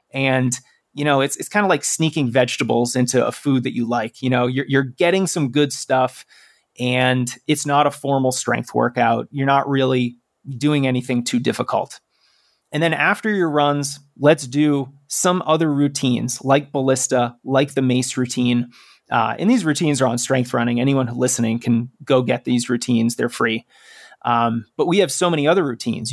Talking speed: 180 wpm